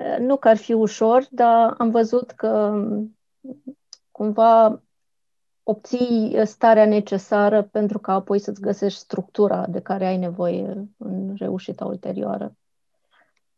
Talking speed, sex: 115 wpm, female